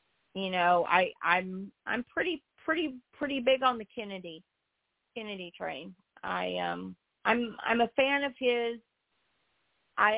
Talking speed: 135 wpm